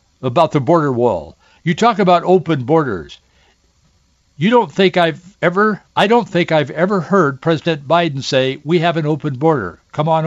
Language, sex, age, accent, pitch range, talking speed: English, male, 60-79, American, 140-185 Hz, 175 wpm